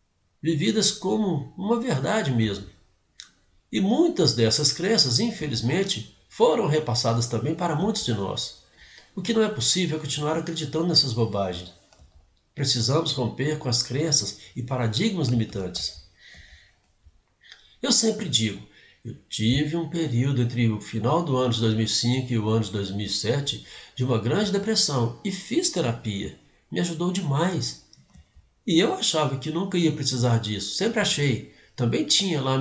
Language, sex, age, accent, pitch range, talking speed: Portuguese, male, 60-79, Brazilian, 110-165 Hz, 145 wpm